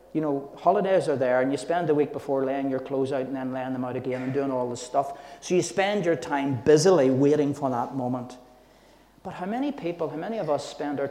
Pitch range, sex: 130-170 Hz, male